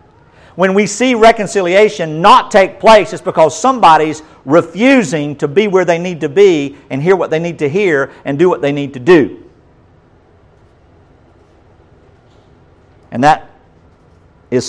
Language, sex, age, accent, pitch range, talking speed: English, male, 50-69, American, 120-170 Hz, 145 wpm